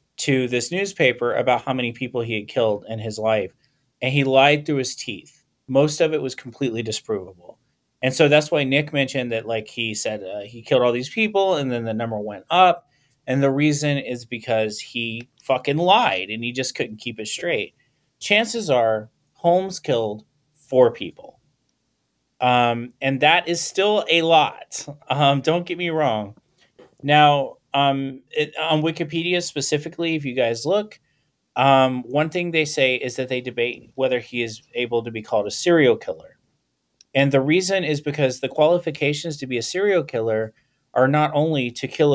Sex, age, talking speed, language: male, 30-49, 180 wpm, English